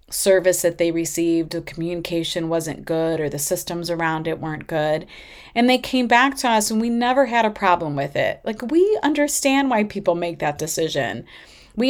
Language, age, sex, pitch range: English, 30-49, female, 170-215 Hz